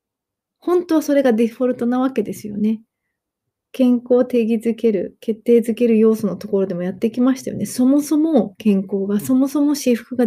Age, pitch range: 30-49, 200-260 Hz